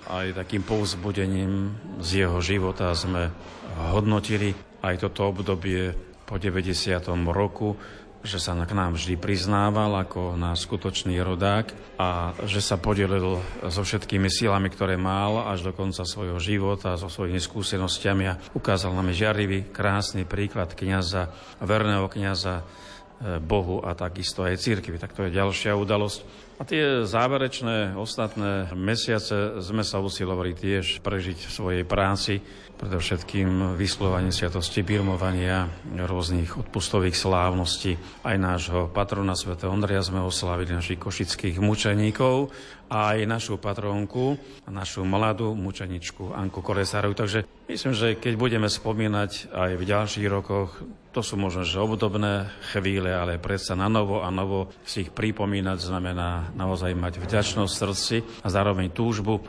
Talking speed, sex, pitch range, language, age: 135 wpm, male, 90-105 Hz, Slovak, 40-59